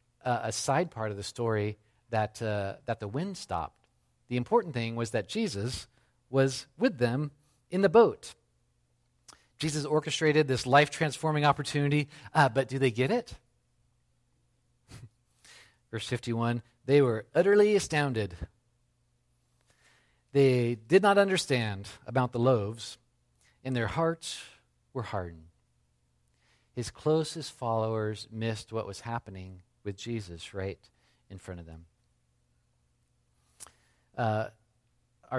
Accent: American